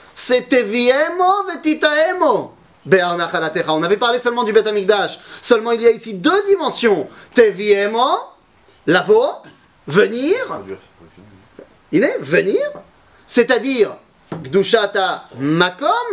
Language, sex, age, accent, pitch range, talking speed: French, male, 30-49, French, 150-250 Hz, 80 wpm